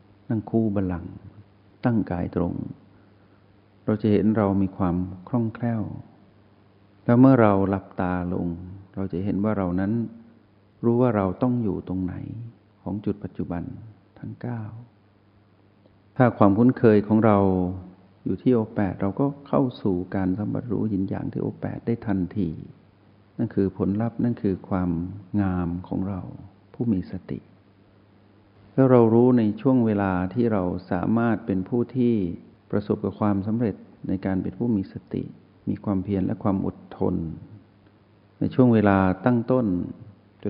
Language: Thai